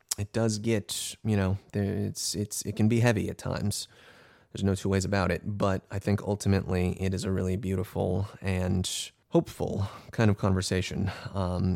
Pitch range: 95-110 Hz